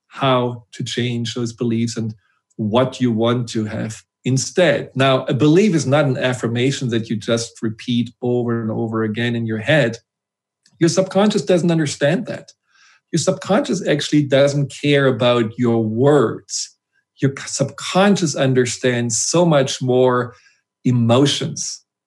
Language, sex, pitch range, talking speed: English, male, 120-145 Hz, 135 wpm